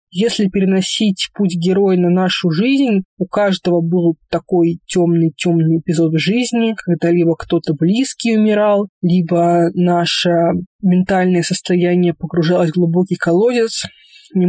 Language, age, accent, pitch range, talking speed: Russian, 20-39, native, 175-210 Hz, 115 wpm